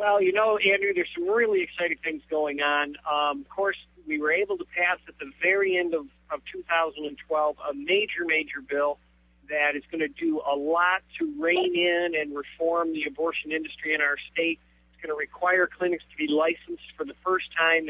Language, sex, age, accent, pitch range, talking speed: English, male, 50-69, American, 145-180 Hz, 200 wpm